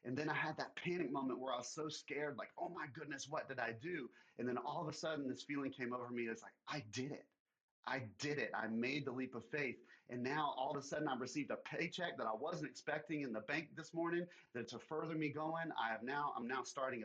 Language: English